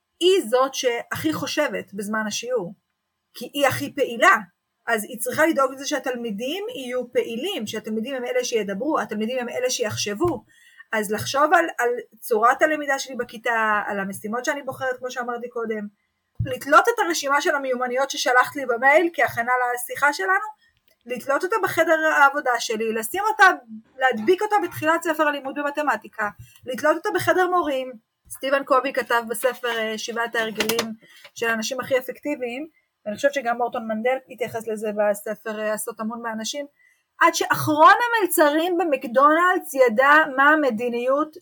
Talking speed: 140 wpm